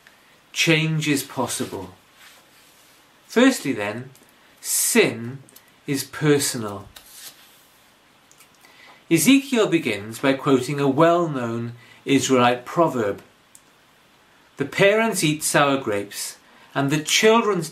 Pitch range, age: 120-175 Hz, 50-69